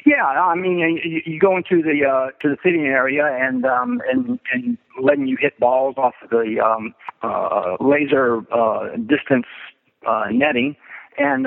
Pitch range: 125-165 Hz